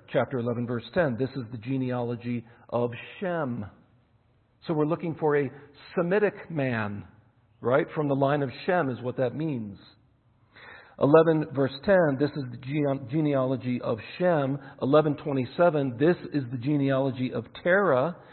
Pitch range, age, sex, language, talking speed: 115-145 Hz, 50-69, male, English, 145 wpm